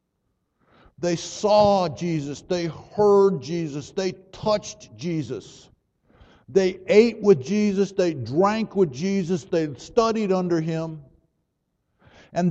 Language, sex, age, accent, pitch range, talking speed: English, male, 60-79, American, 145-200 Hz, 105 wpm